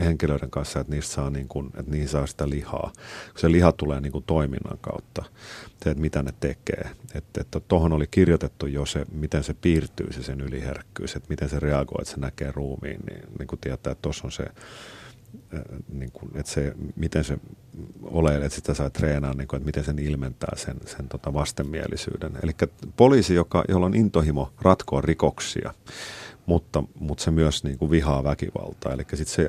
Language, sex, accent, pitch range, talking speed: Finnish, male, native, 70-85 Hz, 185 wpm